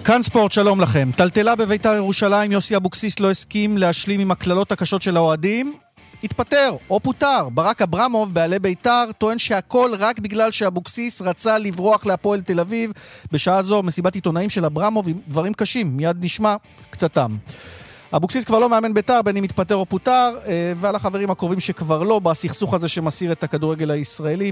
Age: 40-59